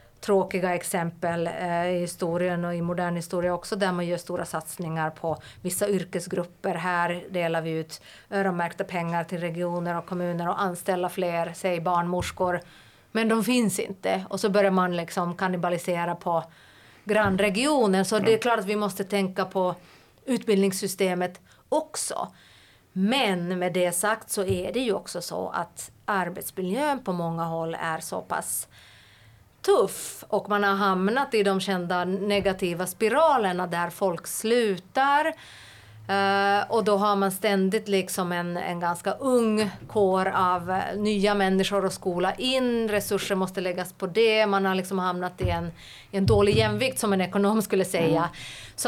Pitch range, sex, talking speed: 175-205 Hz, female, 150 wpm